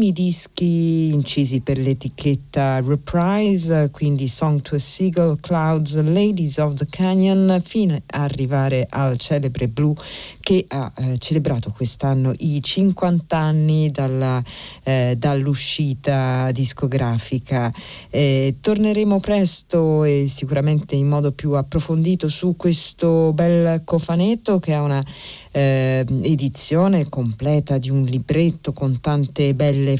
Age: 50-69